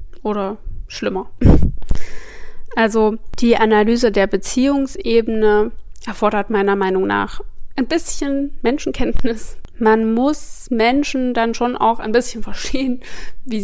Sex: female